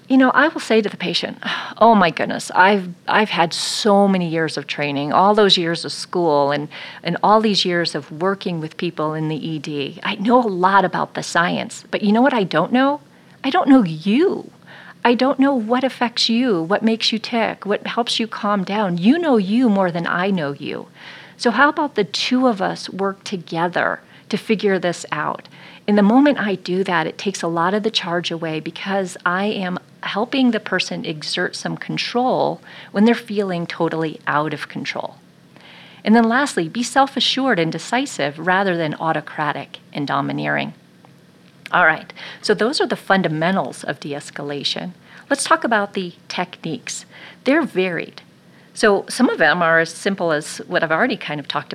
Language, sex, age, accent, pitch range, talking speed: English, female, 40-59, American, 165-230 Hz, 190 wpm